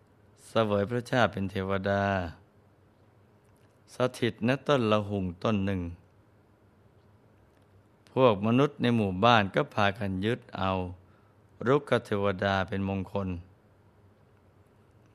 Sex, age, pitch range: male, 20-39, 100-110 Hz